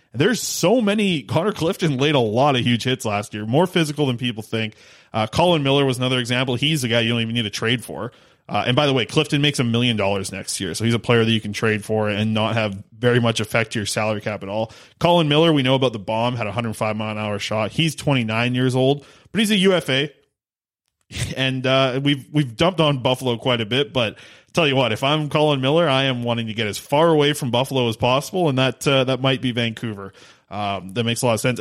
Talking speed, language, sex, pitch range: 250 wpm, English, male, 115-145 Hz